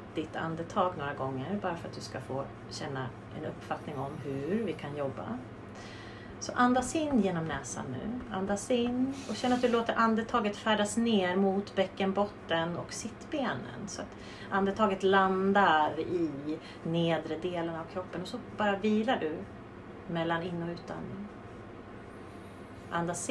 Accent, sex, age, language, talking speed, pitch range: native, female, 30-49, Swedish, 145 wpm, 125-205 Hz